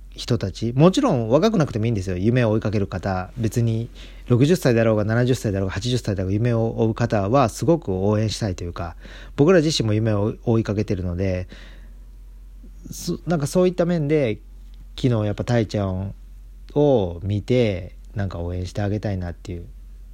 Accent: native